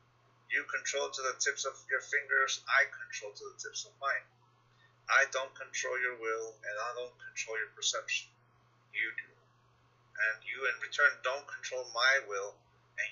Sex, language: male, English